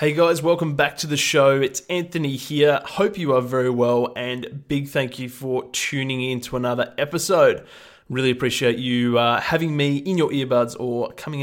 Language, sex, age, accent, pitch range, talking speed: English, male, 20-39, Australian, 125-150 Hz, 190 wpm